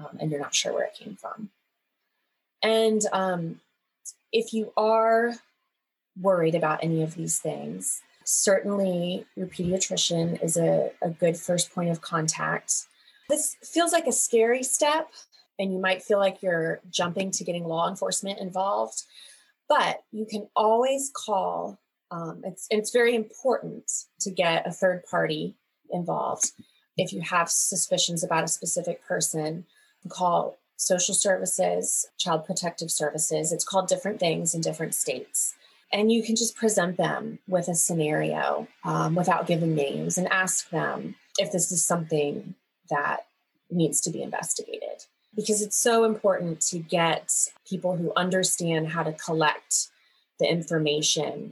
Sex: female